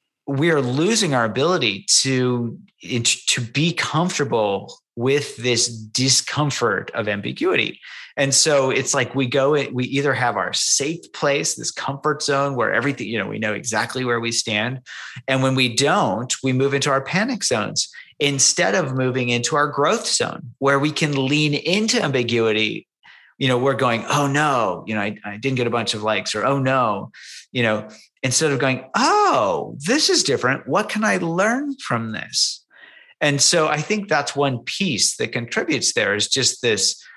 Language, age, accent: English, 30-49, American